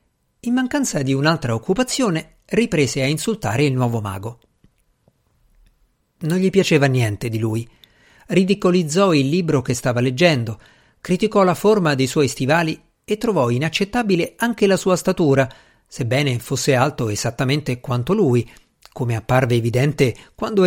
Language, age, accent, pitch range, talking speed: Italian, 50-69, native, 125-190 Hz, 135 wpm